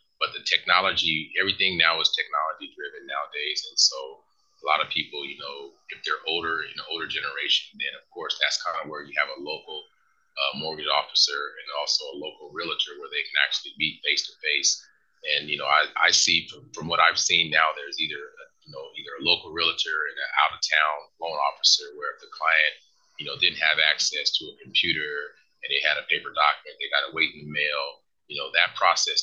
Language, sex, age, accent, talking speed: English, male, 30-49, American, 210 wpm